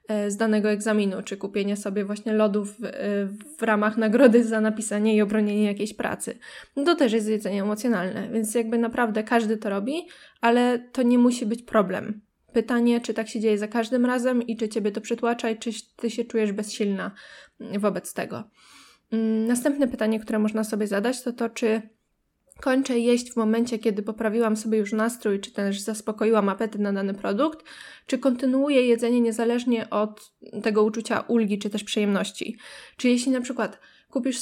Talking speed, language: 170 wpm, Polish